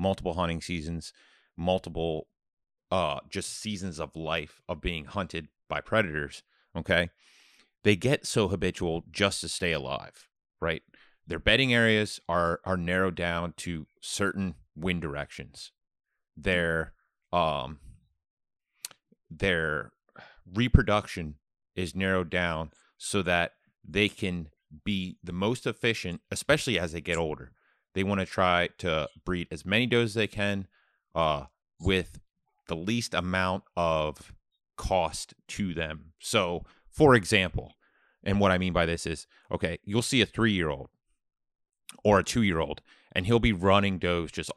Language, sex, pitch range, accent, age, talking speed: English, male, 85-100 Hz, American, 30-49, 135 wpm